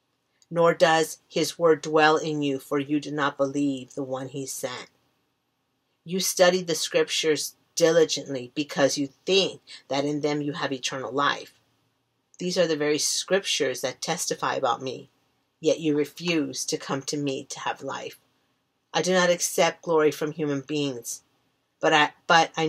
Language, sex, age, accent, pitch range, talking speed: English, female, 40-59, American, 140-160 Hz, 165 wpm